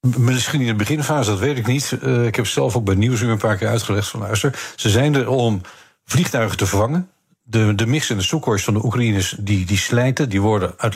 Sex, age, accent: male, 50-69, Dutch